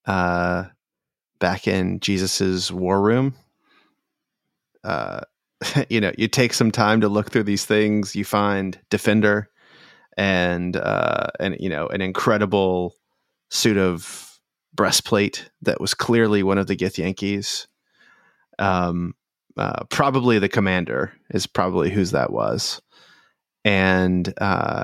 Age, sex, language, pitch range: 30-49, male, English, 95-110 Hz